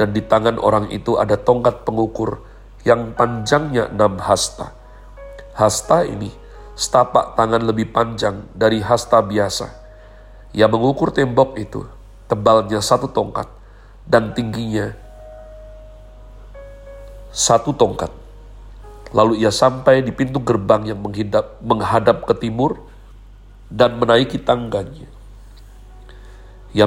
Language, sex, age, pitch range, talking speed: Indonesian, male, 40-59, 105-120 Hz, 105 wpm